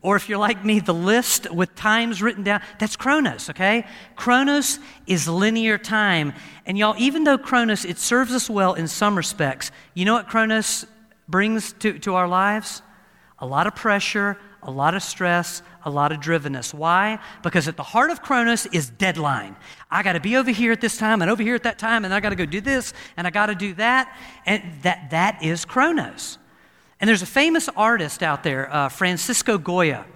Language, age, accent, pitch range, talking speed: English, 50-69, American, 170-225 Hz, 205 wpm